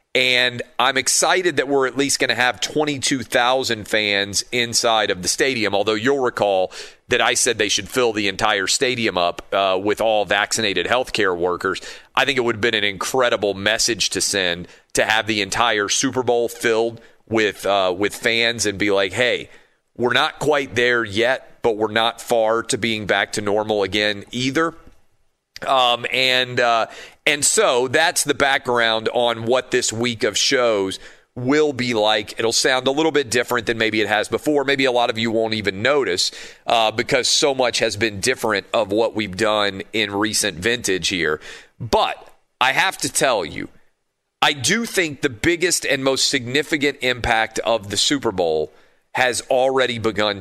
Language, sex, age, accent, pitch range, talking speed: English, male, 40-59, American, 105-130 Hz, 180 wpm